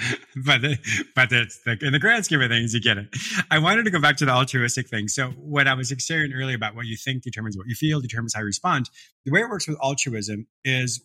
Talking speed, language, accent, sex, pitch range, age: 260 wpm, English, American, male, 115-150 Hz, 30-49